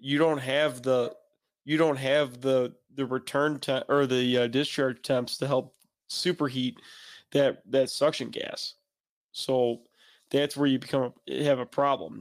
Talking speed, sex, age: 150 wpm, male, 30-49